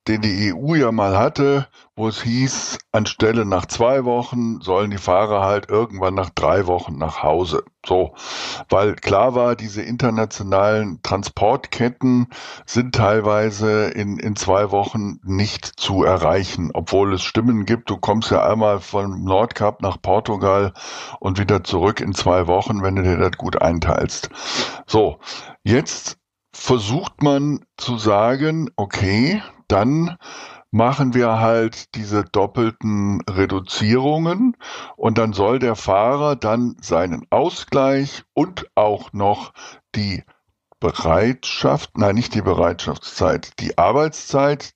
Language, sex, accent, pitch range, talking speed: German, male, German, 100-120 Hz, 130 wpm